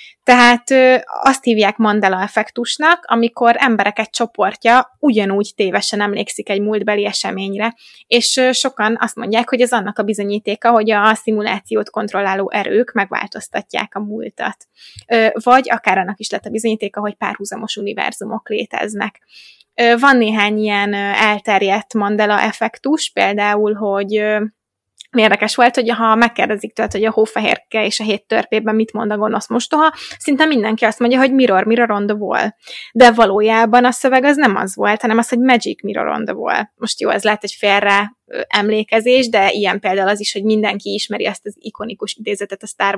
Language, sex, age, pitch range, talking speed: Hungarian, female, 20-39, 205-240 Hz, 155 wpm